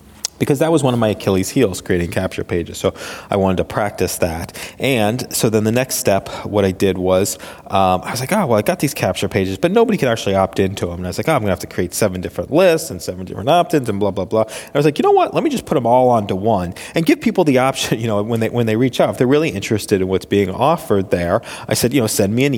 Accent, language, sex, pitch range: American, English, male, 95-120 Hz